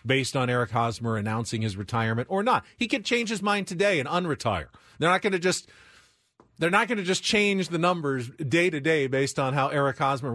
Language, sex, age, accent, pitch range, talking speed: English, male, 40-59, American, 115-175 Hz, 210 wpm